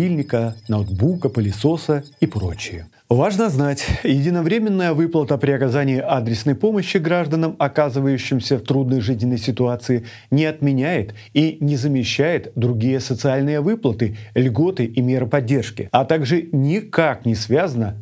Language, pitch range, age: Russian, 115-155 Hz, 40-59